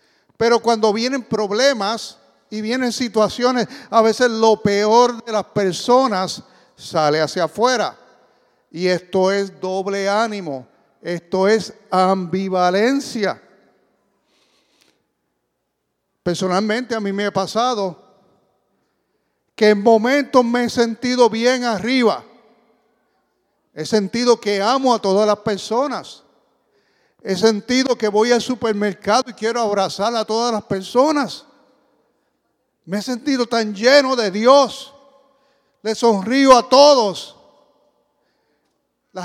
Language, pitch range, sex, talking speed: English, 195-245 Hz, male, 110 wpm